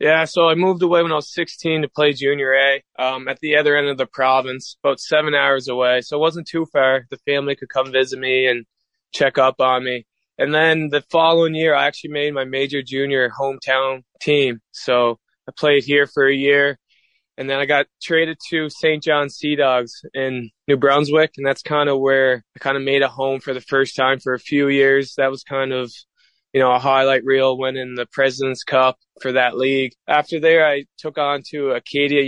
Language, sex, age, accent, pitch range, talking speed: English, male, 20-39, American, 130-145 Hz, 215 wpm